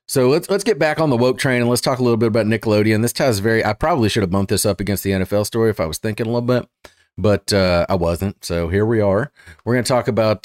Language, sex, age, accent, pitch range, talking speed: English, male, 30-49, American, 95-125 Hz, 295 wpm